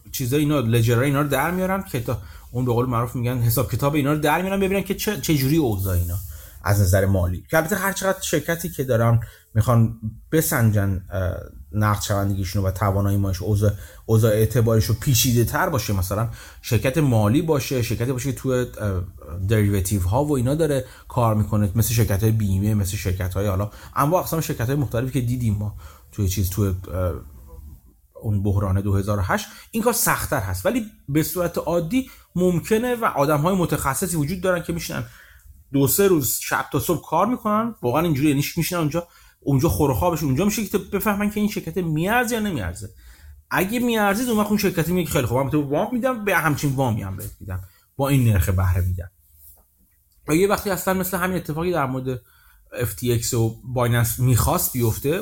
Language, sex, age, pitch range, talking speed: Persian, male, 30-49, 100-165 Hz, 180 wpm